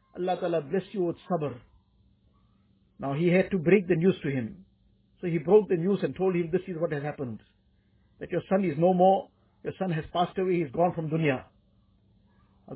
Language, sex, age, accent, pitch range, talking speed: English, male, 50-69, Indian, 160-195 Hz, 205 wpm